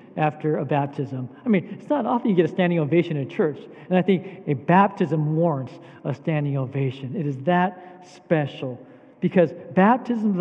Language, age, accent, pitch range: English, 50-69, American, 150-195 Hz